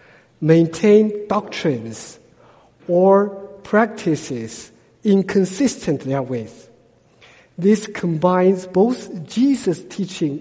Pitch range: 155-215 Hz